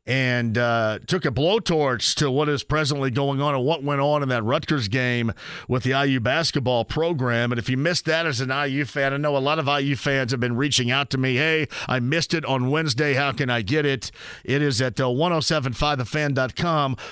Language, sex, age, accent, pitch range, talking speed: English, male, 40-59, American, 125-160 Hz, 215 wpm